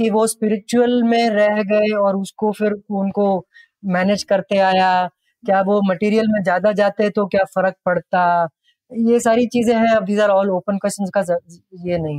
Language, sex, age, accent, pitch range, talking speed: Hindi, female, 30-49, native, 190-235 Hz, 130 wpm